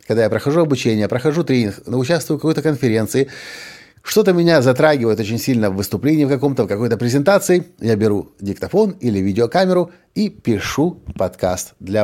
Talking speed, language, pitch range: 155 wpm, Russian, 110-160 Hz